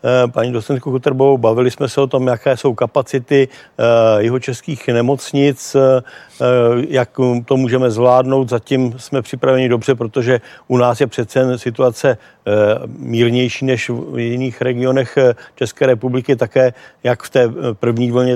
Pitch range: 120-135 Hz